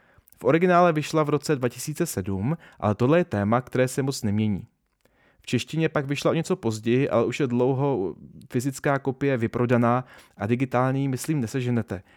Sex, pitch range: male, 115-150 Hz